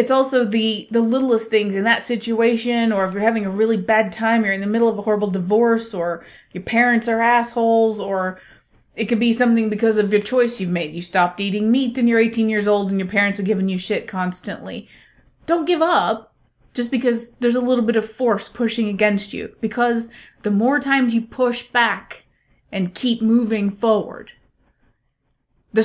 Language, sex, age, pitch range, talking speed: English, female, 20-39, 205-240 Hz, 195 wpm